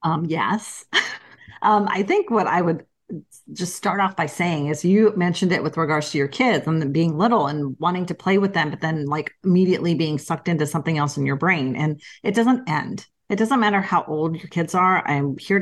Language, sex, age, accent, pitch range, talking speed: English, female, 40-59, American, 155-200 Hz, 220 wpm